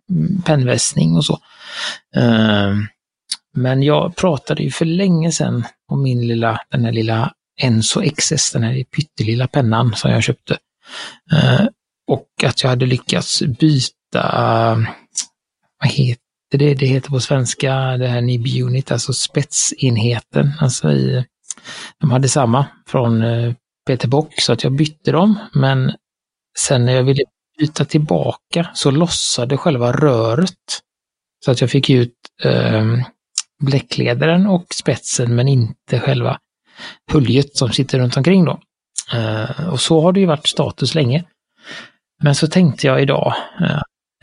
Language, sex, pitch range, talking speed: Swedish, male, 120-155 Hz, 135 wpm